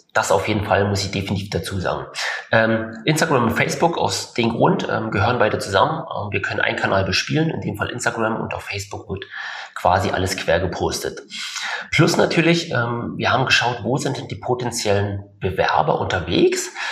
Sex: male